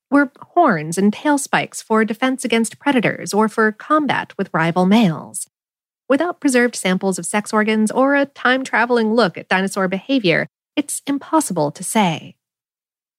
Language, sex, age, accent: English, female, 40-59, American